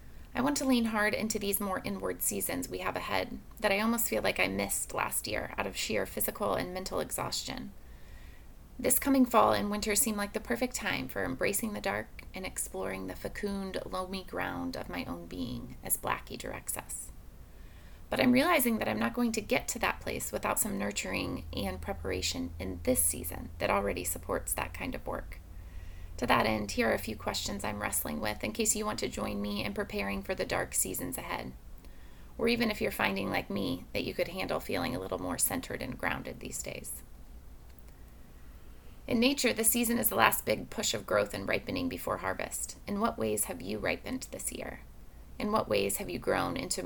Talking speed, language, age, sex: 205 wpm, English, 30-49, female